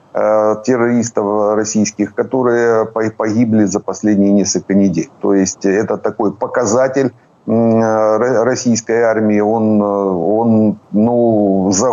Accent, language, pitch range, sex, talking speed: native, Ukrainian, 100-120 Hz, male, 95 wpm